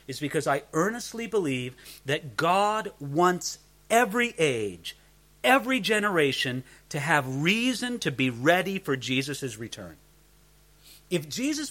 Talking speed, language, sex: 120 wpm, English, male